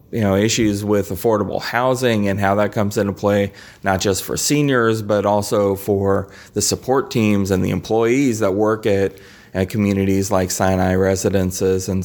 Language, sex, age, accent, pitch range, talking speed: English, male, 30-49, American, 95-105 Hz, 170 wpm